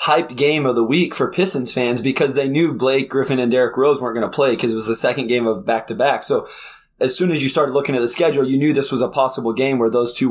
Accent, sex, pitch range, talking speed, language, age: American, male, 130-165 Hz, 290 wpm, English, 20-39